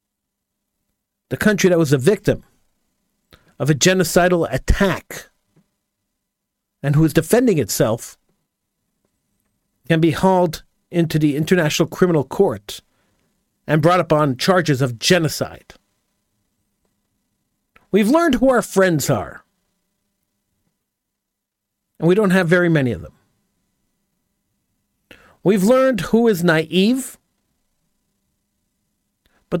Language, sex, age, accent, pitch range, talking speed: English, male, 50-69, American, 140-185 Hz, 100 wpm